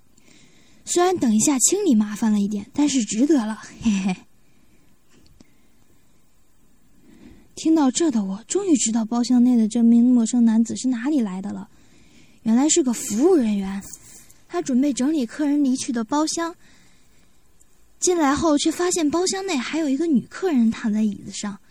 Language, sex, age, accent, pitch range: Chinese, female, 20-39, native, 220-300 Hz